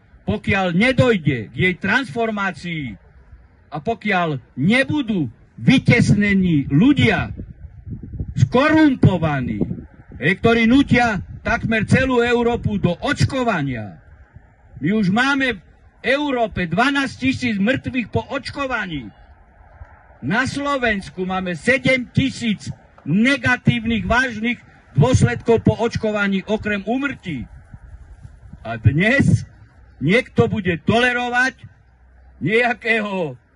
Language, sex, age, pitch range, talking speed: Slovak, male, 50-69, 150-240 Hz, 80 wpm